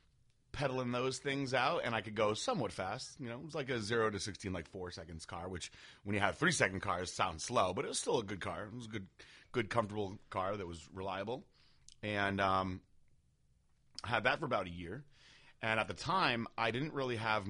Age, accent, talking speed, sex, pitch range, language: 30-49, American, 225 wpm, male, 95-120 Hz, English